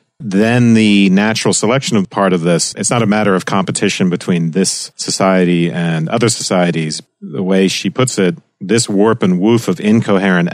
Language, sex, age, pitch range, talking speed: English, male, 40-59, 90-115 Hz, 175 wpm